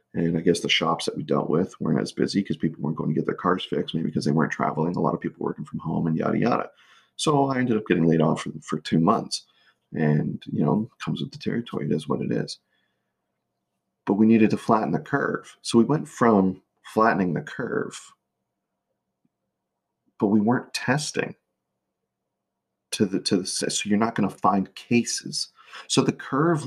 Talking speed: 200 wpm